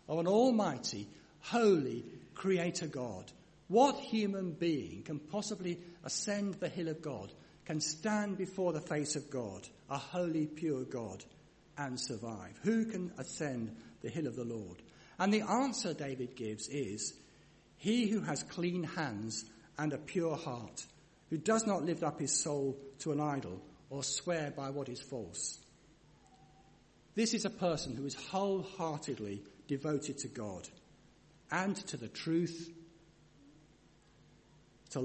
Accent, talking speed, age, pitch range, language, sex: British, 140 wpm, 60-79, 130-175 Hz, English, male